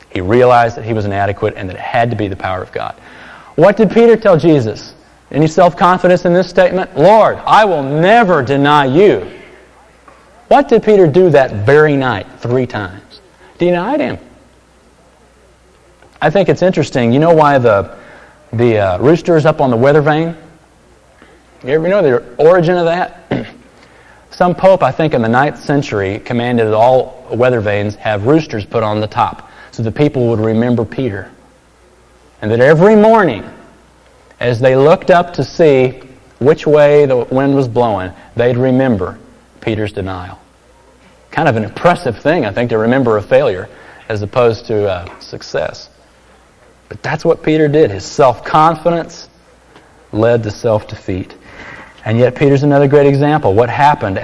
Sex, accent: male, American